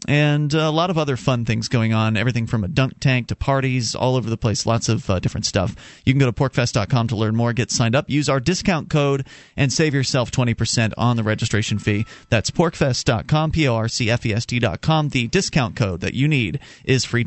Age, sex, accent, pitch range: 30-49, male, American, 115-150 Hz